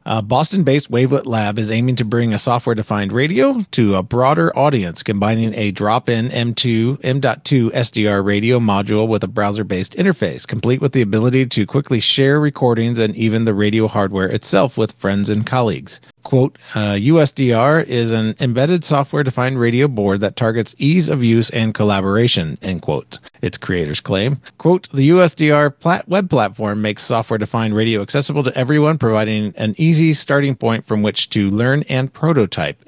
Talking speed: 160 wpm